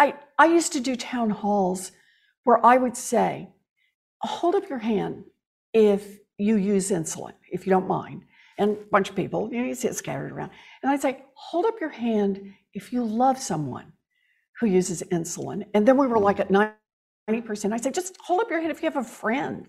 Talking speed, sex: 205 wpm, female